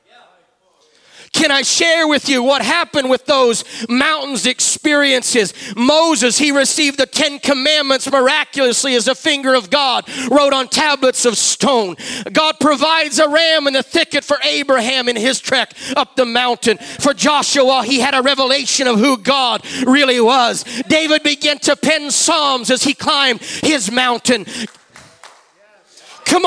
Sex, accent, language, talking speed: male, American, English, 145 wpm